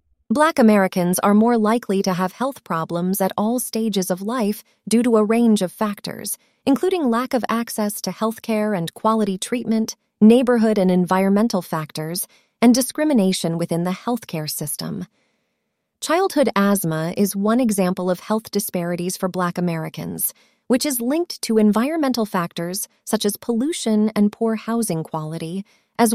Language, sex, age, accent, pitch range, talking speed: English, female, 30-49, American, 185-230 Hz, 150 wpm